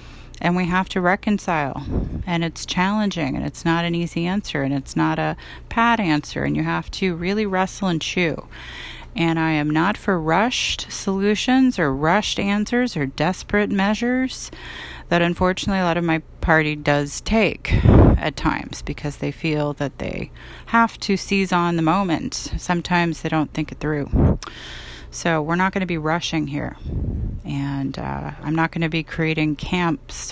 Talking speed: 170 wpm